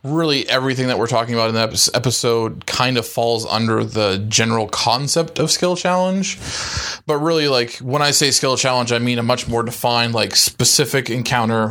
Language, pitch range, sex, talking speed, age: English, 110-130 Hz, male, 185 wpm, 20-39